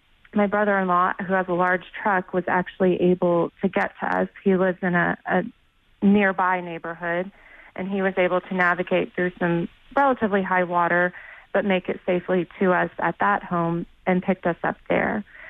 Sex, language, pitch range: female, English, 175-195 Hz